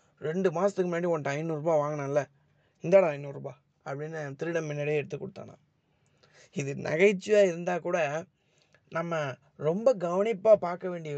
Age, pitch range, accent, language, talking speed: 20-39, 150-185 Hz, native, Tamil, 125 wpm